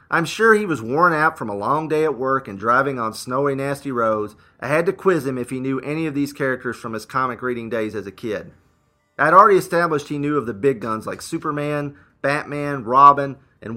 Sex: male